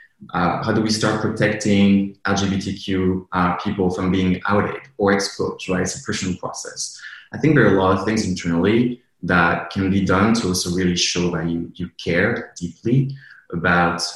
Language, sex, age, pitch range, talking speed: English, male, 20-39, 90-105 Hz, 180 wpm